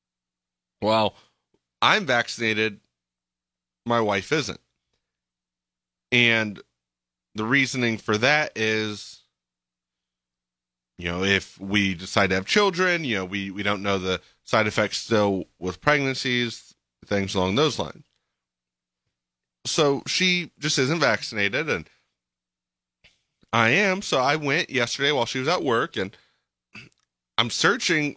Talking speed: 120 wpm